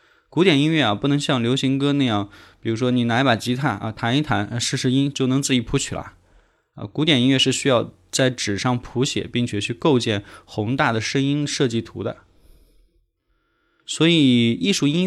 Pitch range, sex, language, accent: 110-145 Hz, male, Chinese, native